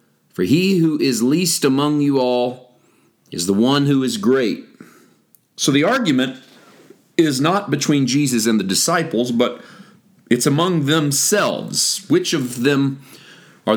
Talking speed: 140 wpm